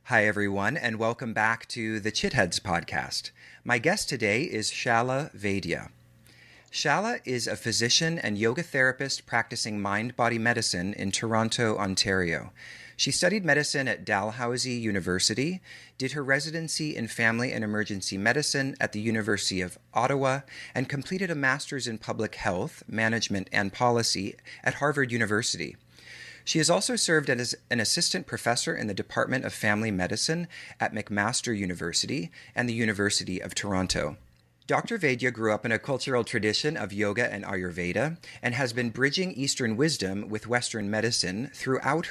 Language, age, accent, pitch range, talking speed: English, 40-59, American, 105-135 Hz, 150 wpm